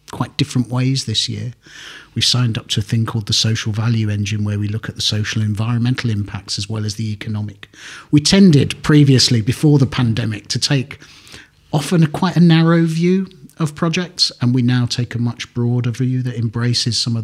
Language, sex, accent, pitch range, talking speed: English, male, British, 110-140 Hz, 195 wpm